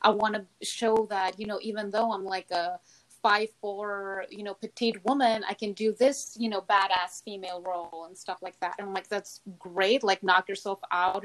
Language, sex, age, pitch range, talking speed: English, female, 20-39, 185-210 Hz, 210 wpm